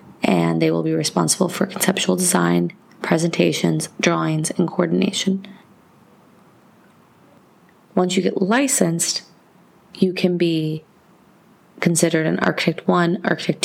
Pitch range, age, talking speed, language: 165-195 Hz, 20-39, 105 wpm, English